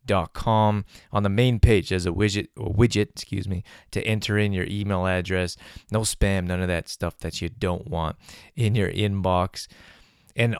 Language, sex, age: English, male, 20-39